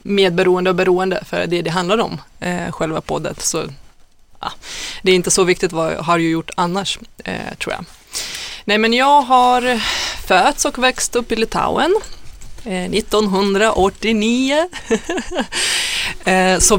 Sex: female